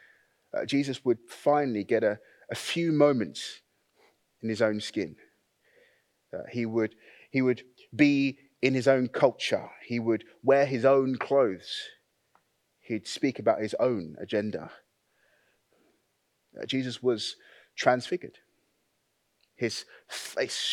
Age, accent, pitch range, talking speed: 30-49, British, 110-135 Hz, 115 wpm